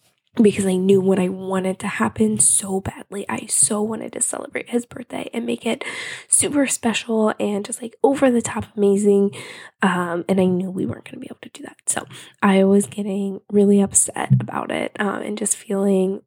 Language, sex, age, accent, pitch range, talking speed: English, female, 10-29, American, 190-235 Hz, 200 wpm